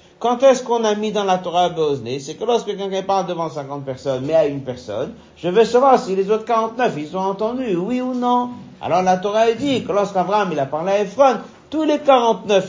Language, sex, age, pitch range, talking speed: French, male, 50-69, 150-215 Hz, 235 wpm